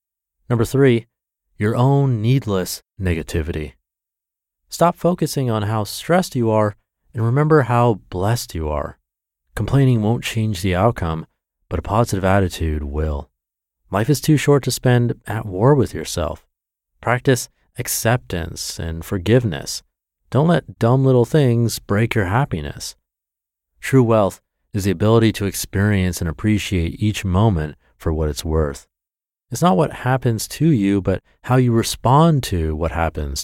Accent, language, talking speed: American, English, 140 wpm